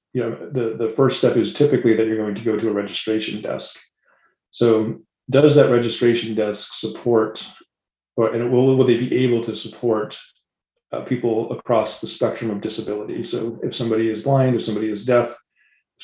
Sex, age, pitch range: male, 30-49, 110-125 Hz